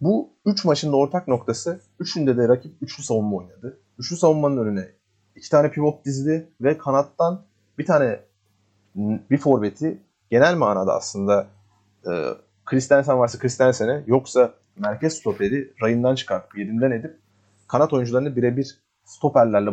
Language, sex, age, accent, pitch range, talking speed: Turkish, male, 30-49, native, 105-150 Hz, 130 wpm